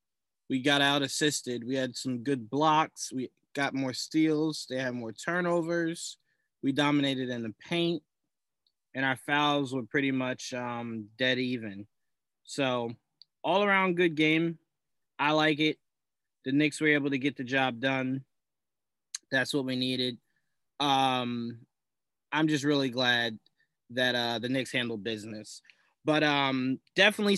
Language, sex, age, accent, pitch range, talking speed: English, male, 20-39, American, 120-155 Hz, 140 wpm